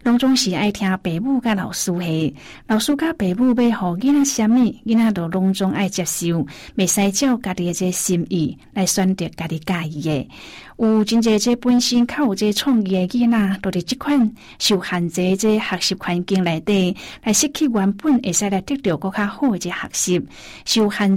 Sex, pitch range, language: female, 180-230 Hz, Chinese